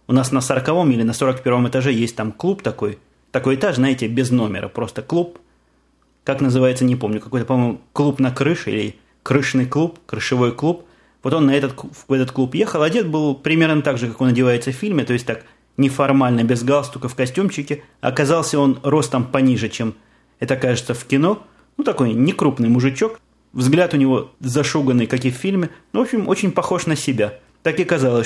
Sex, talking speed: male, 185 wpm